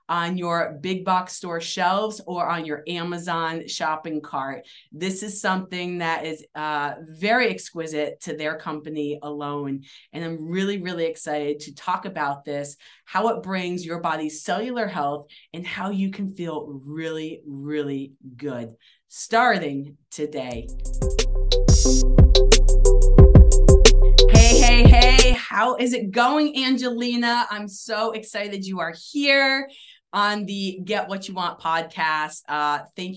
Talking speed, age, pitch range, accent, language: 130 wpm, 30-49, 155-200 Hz, American, English